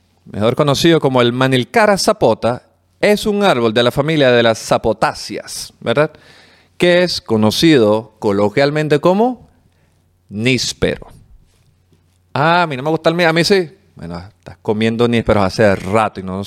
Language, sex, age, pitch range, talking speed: Spanish, male, 40-59, 100-140 Hz, 155 wpm